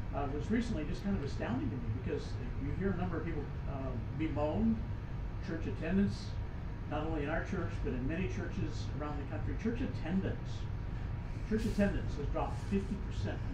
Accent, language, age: American, English, 50-69